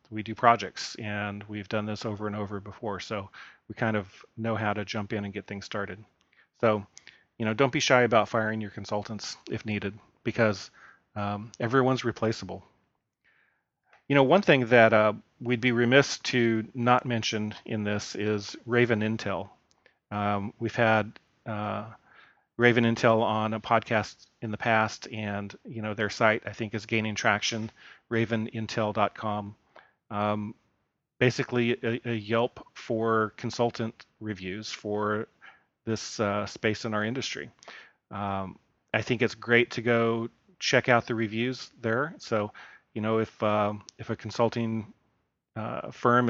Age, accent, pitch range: 40-59, American, 105-120 Hz